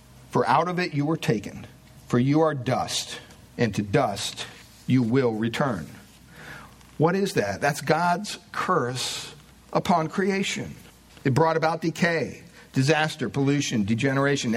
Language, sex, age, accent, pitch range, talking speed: English, male, 50-69, American, 140-185 Hz, 130 wpm